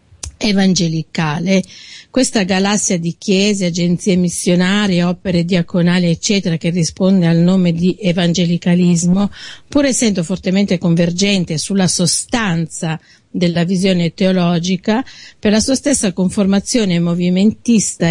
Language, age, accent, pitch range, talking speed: Italian, 50-69, native, 175-200 Hz, 105 wpm